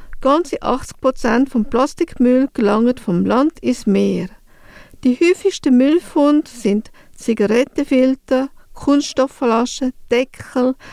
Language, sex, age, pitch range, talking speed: English, female, 50-69, 225-275 Hz, 90 wpm